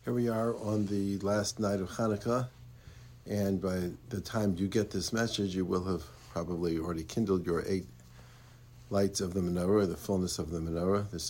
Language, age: English, 60-79